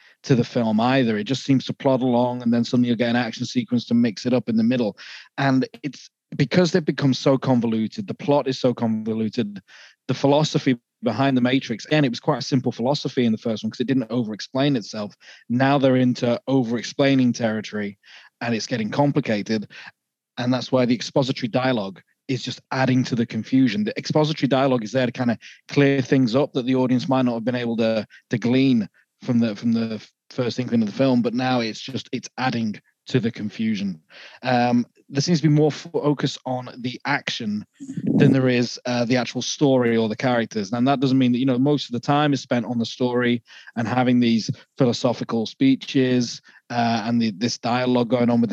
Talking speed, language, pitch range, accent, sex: 210 wpm, English, 120-135 Hz, British, male